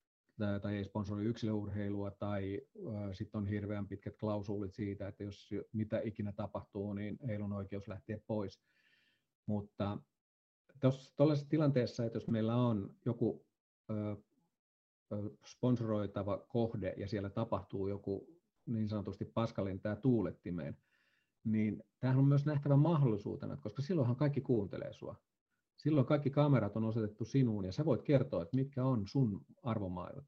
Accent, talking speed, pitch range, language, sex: native, 135 wpm, 105-125 Hz, Finnish, male